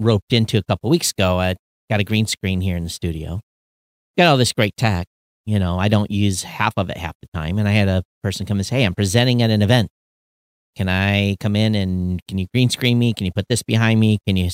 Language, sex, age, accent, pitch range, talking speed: English, male, 40-59, American, 95-135 Hz, 260 wpm